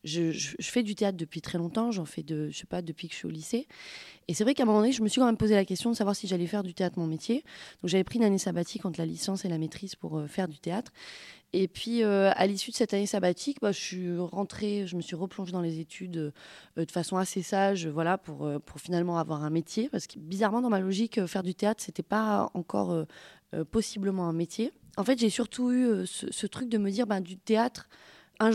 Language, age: French, 20-39